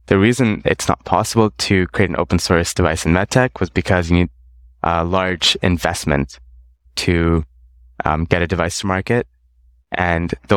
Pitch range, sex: 70-90 Hz, male